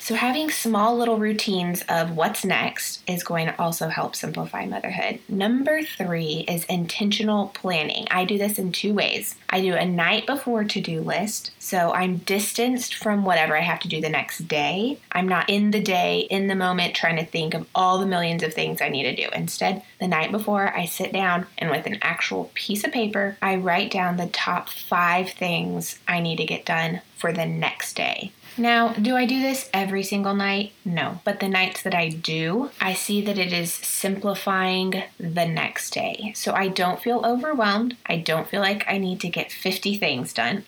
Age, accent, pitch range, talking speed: 20-39, American, 175-225 Hz, 200 wpm